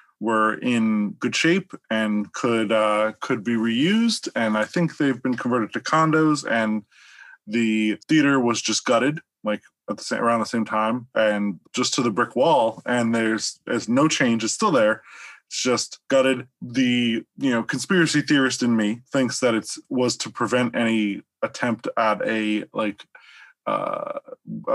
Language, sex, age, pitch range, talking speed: English, male, 20-39, 110-135 Hz, 165 wpm